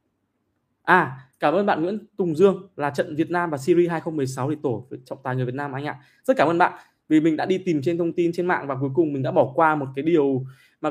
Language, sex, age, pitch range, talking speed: Vietnamese, male, 20-39, 130-170 Hz, 265 wpm